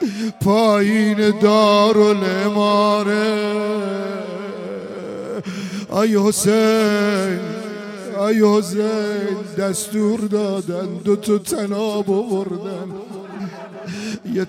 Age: 50-69